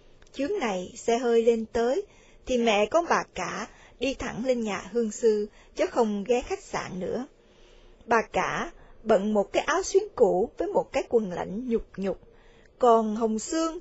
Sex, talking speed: female, 180 wpm